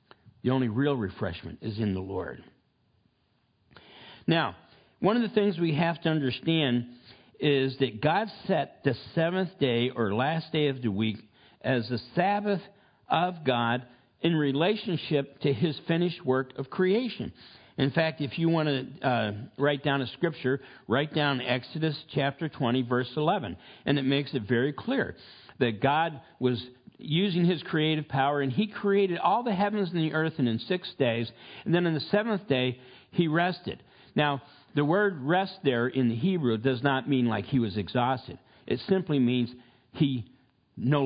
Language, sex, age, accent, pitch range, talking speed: English, male, 60-79, American, 125-170 Hz, 170 wpm